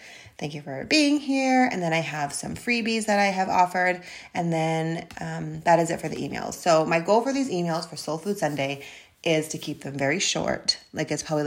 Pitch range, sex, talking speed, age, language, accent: 150-200 Hz, female, 225 wpm, 30-49, English, American